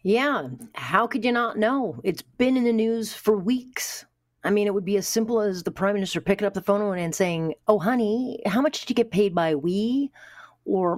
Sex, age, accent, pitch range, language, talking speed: female, 40-59, American, 155-215 Hz, English, 225 wpm